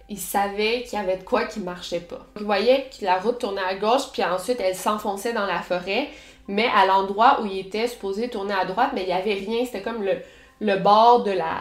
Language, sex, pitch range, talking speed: French, female, 190-240 Hz, 245 wpm